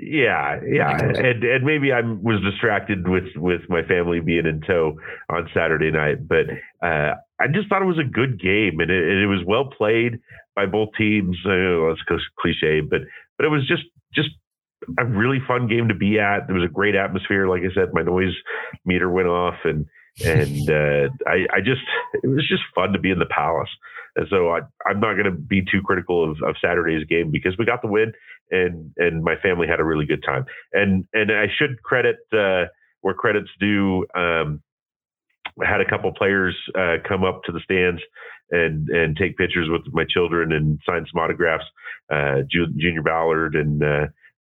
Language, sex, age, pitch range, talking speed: English, male, 40-59, 80-105 Hz, 200 wpm